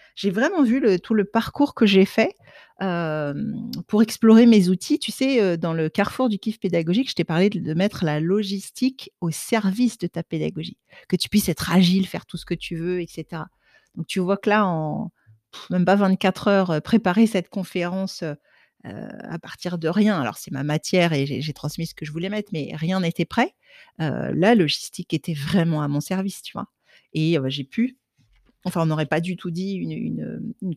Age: 50-69